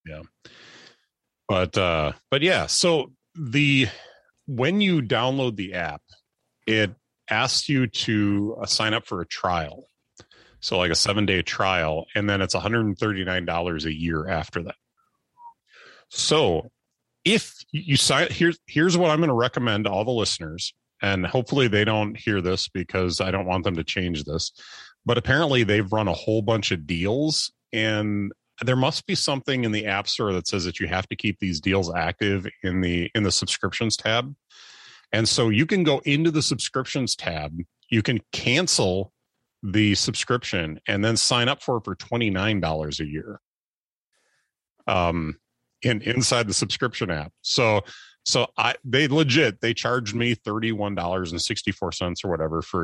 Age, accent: 30-49, American